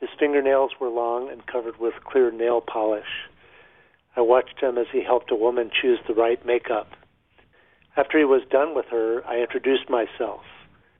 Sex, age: male, 50-69